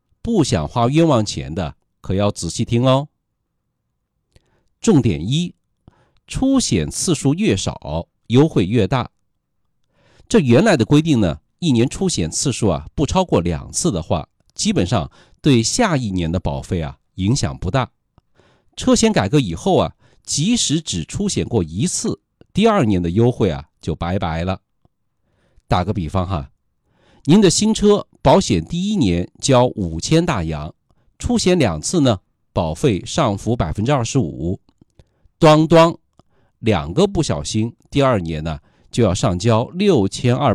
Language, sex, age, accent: Chinese, male, 50-69, native